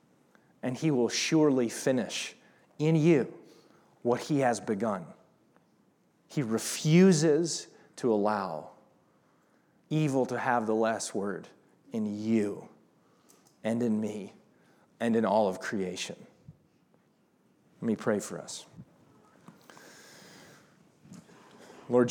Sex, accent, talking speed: male, American, 100 wpm